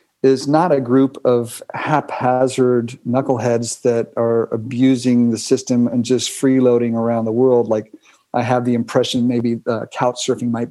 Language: English